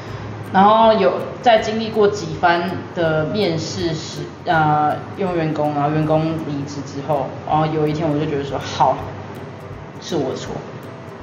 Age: 20-39